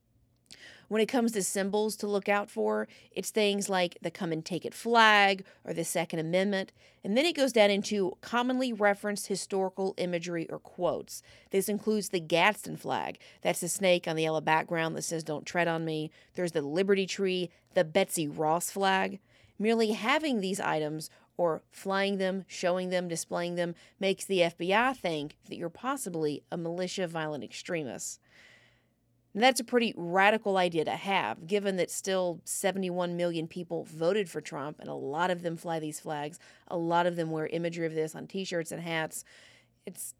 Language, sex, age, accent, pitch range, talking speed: English, female, 30-49, American, 160-200 Hz, 175 wpm